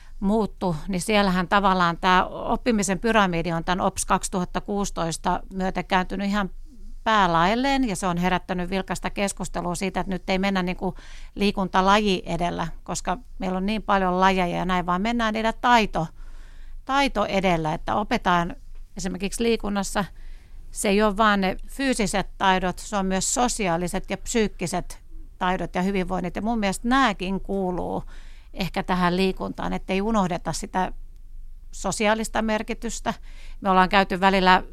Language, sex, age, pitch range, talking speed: Finnish, female, 60-79, 180-210 Hz, 140 wpm